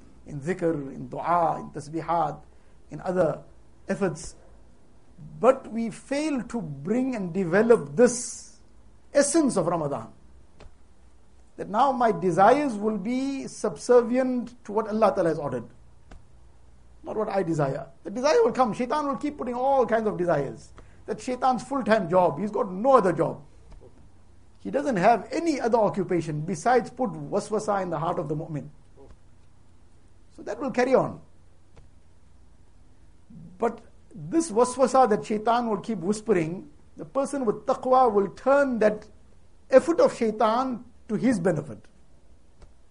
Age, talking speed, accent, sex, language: 60-79, 135 wpm, Indian, male, English